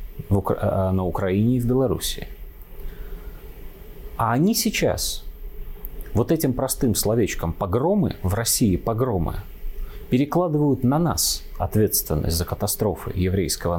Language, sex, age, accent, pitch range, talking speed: Russian, male, 30-49, native, 95-125 Hz, 100 wpm